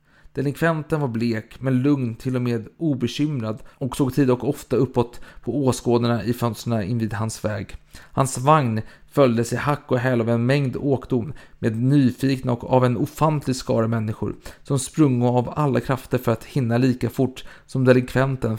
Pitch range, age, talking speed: 110-135 Hz, 40-59, 175 wpm